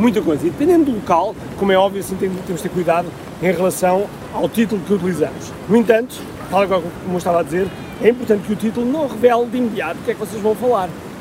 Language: Portuguese